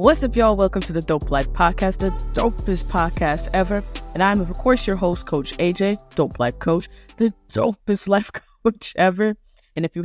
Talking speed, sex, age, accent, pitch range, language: 190 wpm, female, 20-39, American, 155-195 Hz, English